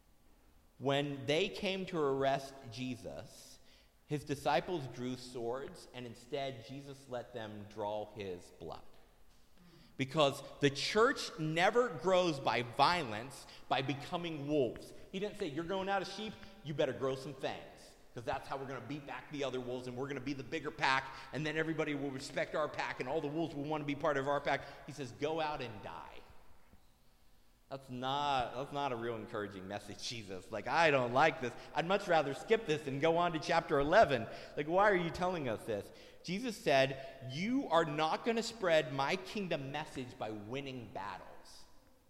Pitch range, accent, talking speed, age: 120-155 Hz, American, 185 wpm, 40-59